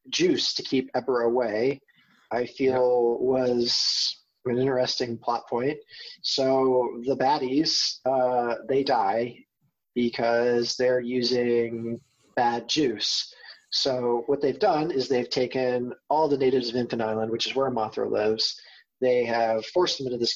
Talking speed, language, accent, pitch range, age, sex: 140 wpm, English, American, 120-145 Hz, 30-49, male